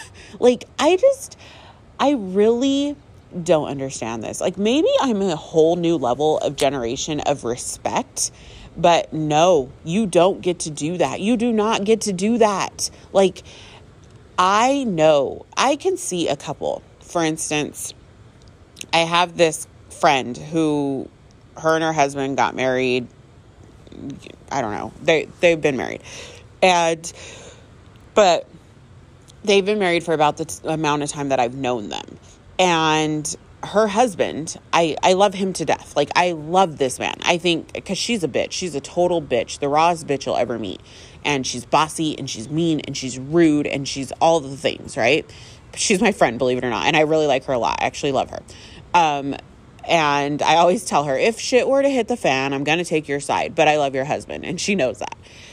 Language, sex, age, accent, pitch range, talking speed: English, female, 30-49, American, 135-185 Hz, 180 wpm